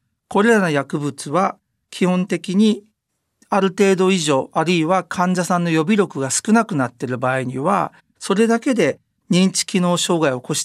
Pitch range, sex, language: 155-215 Hz, male, Japanese